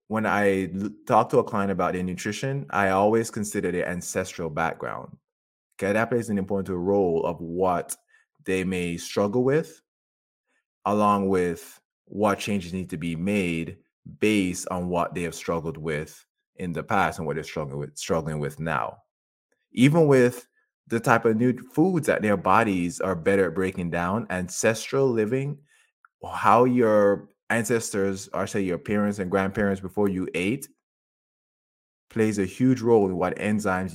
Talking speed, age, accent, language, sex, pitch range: 155 wpm, 20-39, American, English, male, 90-115 Hz